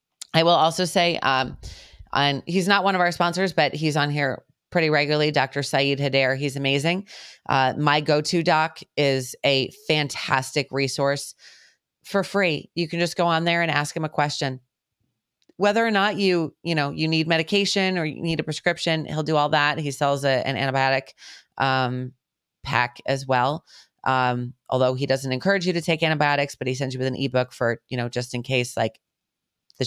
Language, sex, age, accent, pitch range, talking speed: English, female, 30-49, American, 130-155 Hz, 190 wpm